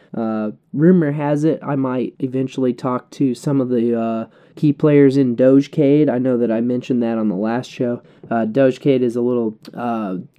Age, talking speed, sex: 20-39, 190 wpm, male